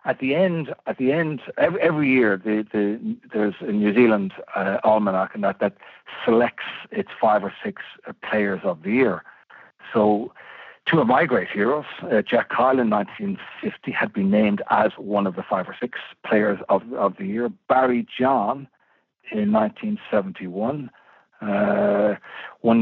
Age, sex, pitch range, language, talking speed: 60-79, male, 105-160 Hz, English, 155 wpm